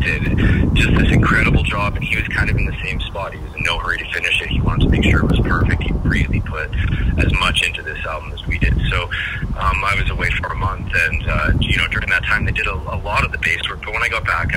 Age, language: 40-59, English